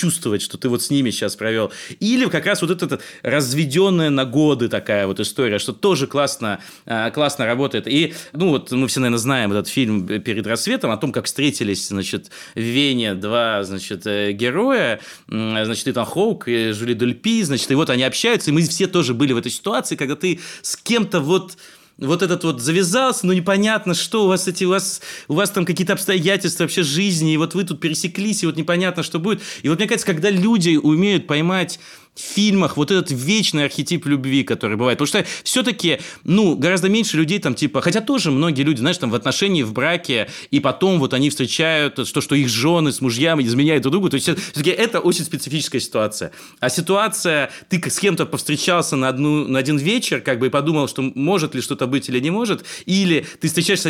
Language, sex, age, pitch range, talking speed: Russian, male, 30-49, 130-180 Hz, 200 wpm